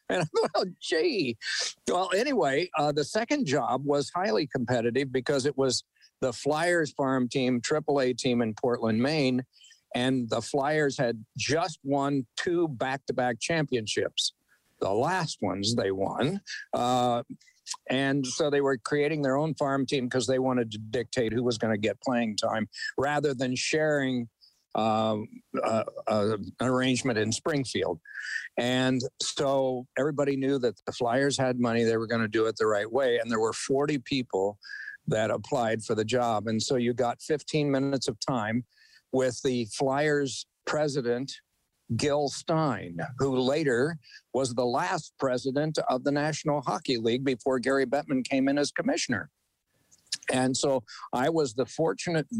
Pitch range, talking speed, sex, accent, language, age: 120-145 Hz, 155 wpm, male, American, English, 60-79